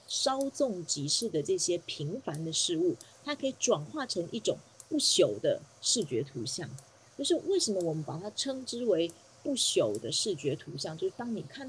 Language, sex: Chinese, female